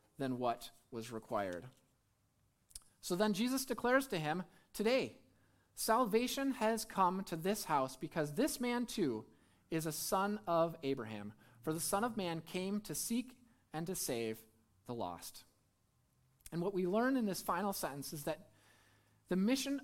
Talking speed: 155 wpm